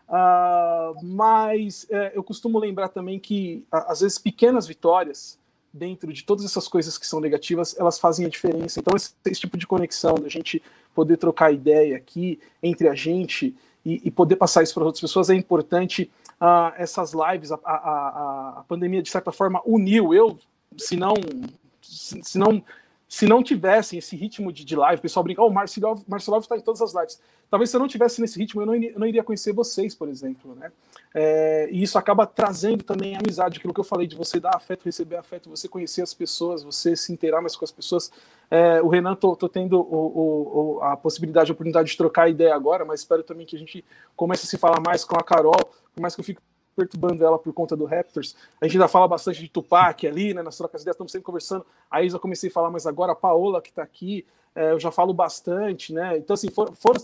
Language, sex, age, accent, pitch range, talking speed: Portuguese, male, 40-59, Brazilian, 165-205 Hz, 220 wpm